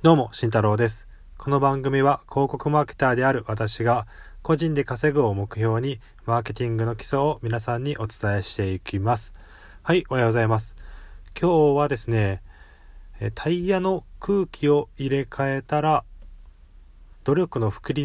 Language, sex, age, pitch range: Japanese, male, 20-39, 100-145 Hz